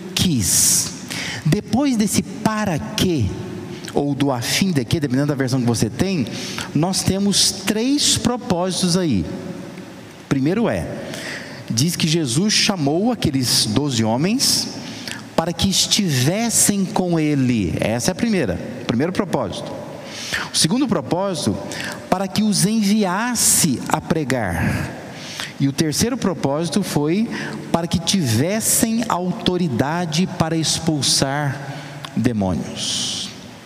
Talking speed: 110 wpm